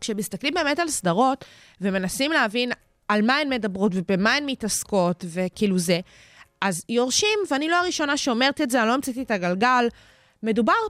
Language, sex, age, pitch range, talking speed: Hebrew, female, 20-39, 195-260 Hz, 160 wpm